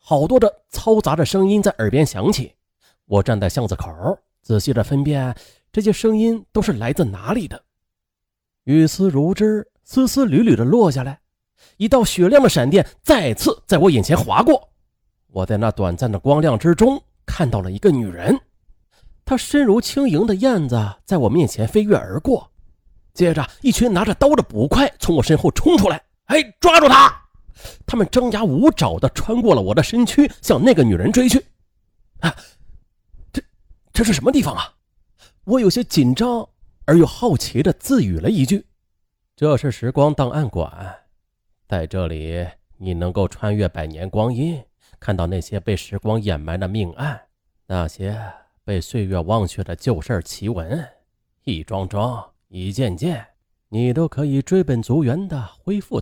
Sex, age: male, 30-49